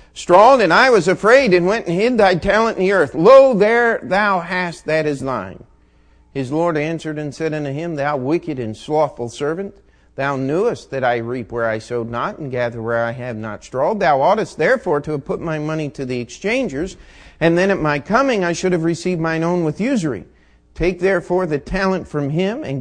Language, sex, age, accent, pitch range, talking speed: English, male, 50-69, American, 115-180 Hz, 210 wpm